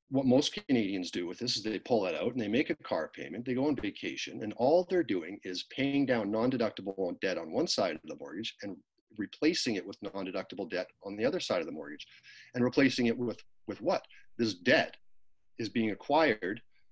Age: 40-59